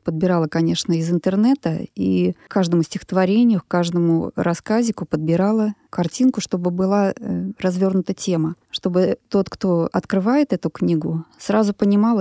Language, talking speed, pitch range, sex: Russian, 120 wpm, 180-245 Hz, female